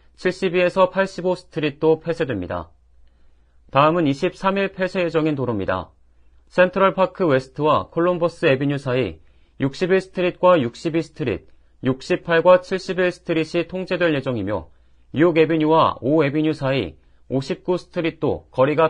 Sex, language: male, Korean